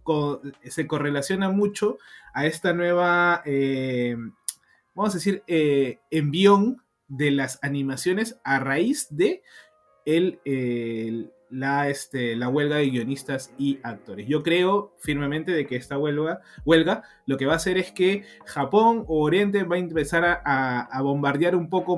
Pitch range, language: 130-170 Hz, Spanish